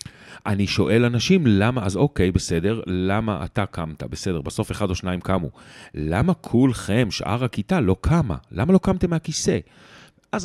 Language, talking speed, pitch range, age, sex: Hebrew, 155 wpm, 90-125 Hz, 40-59, male